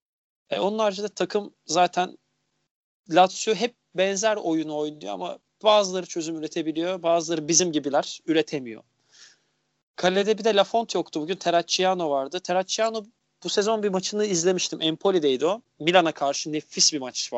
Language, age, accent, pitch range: Turkish, 40-59, native, 150-205 Hz